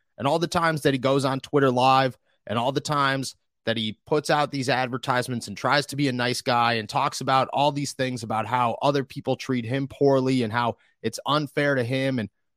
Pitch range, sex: 125-150 Hz, male